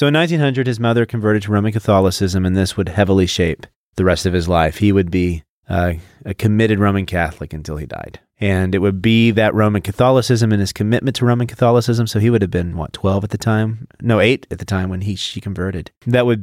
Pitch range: 90-110 Hz